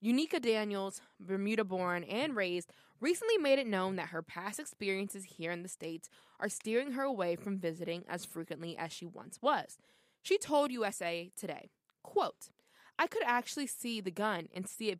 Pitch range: 180-250 Hz